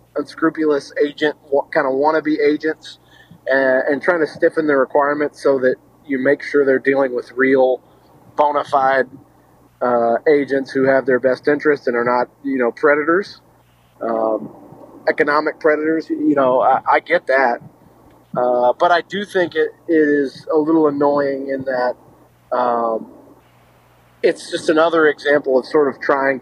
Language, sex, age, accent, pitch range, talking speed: English, male, 40-59, American, 130-155 Hz, 160 wpm